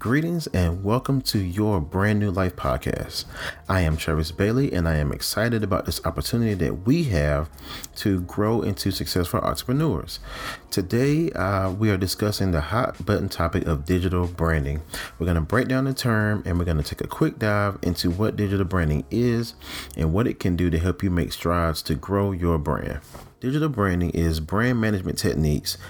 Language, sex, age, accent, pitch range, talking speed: English, male, 30-49, American, 80-105 Hz, 185 wpm